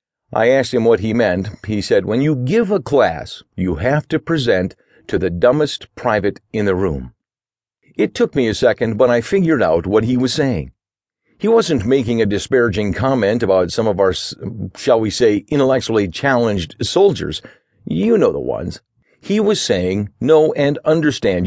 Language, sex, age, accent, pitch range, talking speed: English, male, 50-69, American, 100-135 Hz, 175 wpm